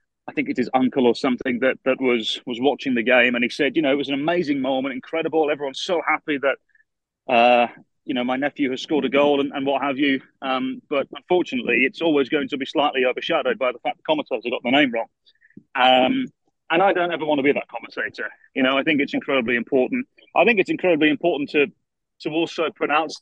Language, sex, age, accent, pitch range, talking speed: English, male, 30-49, British, 130-160 Hz, 230 wpm